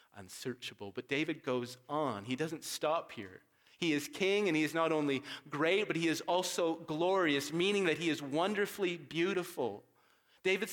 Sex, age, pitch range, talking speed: male, 30-49, 150-190 Hz, 170 wpm